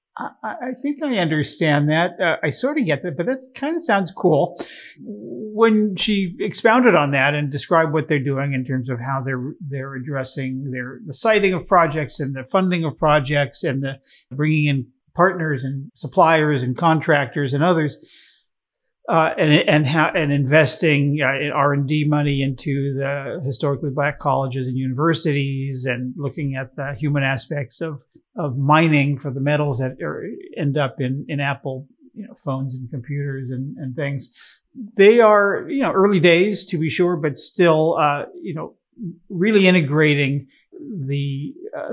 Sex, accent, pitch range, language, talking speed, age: male, American, 135-175 Hz, English, 165 wpm, 50-69